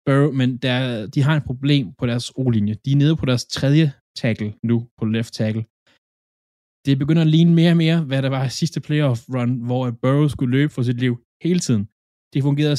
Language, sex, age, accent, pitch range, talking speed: Danish, male, 20-39, native, 110-135 Hz, 210 wpm